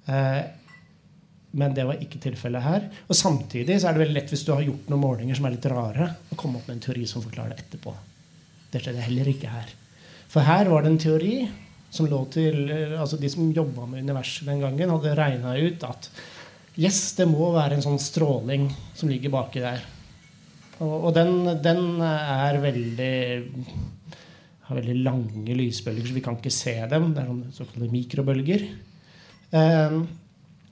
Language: English